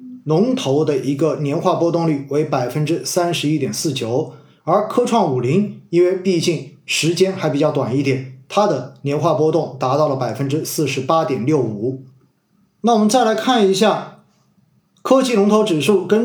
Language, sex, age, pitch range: Chinese, male, 20-39, 140-185 Hz